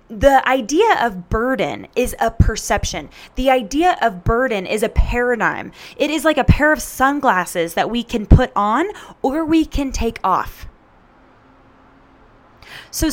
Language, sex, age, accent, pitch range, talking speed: English, female, 10-29, American, 220-305 Hz, 145 wpm